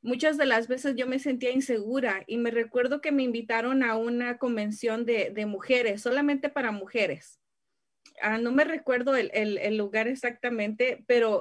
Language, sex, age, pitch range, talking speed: Spanish, female, 30-49, 230-275 Hz, 175 wpm